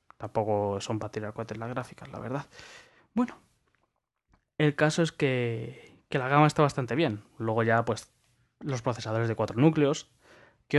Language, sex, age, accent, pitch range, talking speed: Spanish, male, 20-39, Spanish, 120-155 Hz, 160 wpm